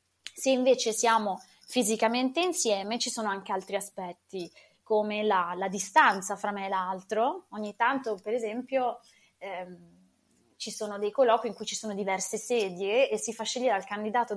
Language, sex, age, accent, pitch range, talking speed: Italian, female, 20-39, native, 200-240 Hz, 165 wpm